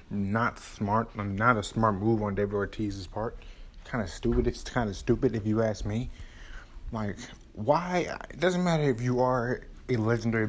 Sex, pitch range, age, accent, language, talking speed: male, 105-145 Hz, 20-39, American, English, 175 wpm